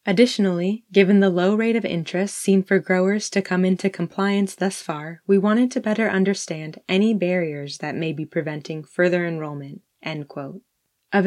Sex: female